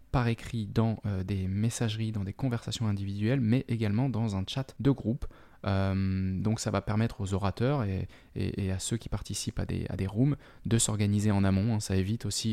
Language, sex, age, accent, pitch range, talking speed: French, male, 20-39, French, 100-120 Hz, 205 wpm